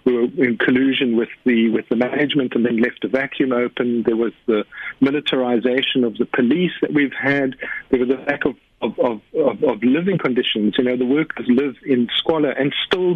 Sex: male